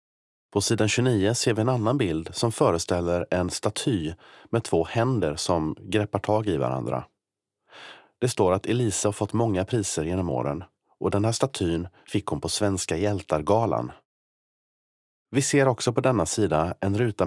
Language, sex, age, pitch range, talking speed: Swedish, male, 30-49, 85-115 Hz, 165 wpm